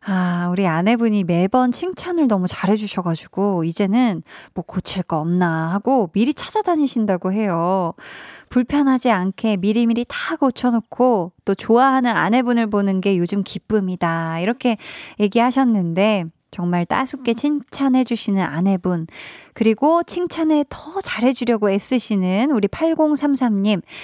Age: 20-39